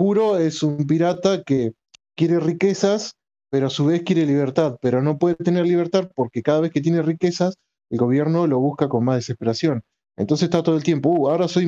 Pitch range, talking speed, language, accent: 125-165 Hz, 195 wpm, Spanish, Argentinian